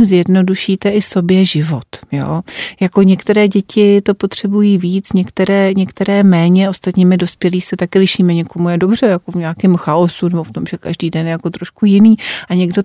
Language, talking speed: Czech, 180 wpm